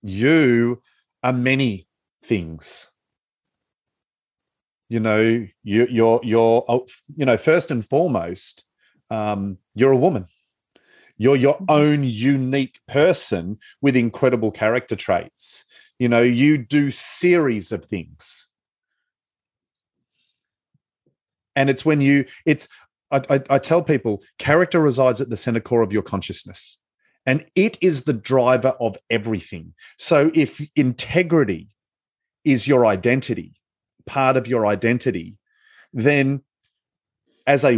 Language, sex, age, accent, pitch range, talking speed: English, male, 30-49, Australian, 115-140 Hz, 115 wpm